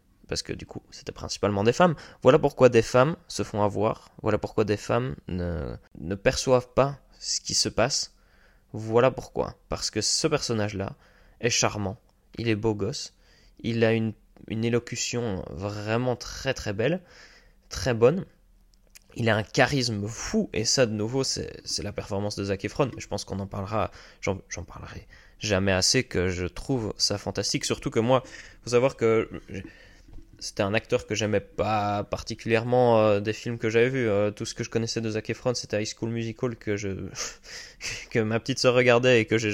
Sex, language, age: male, French, 20-39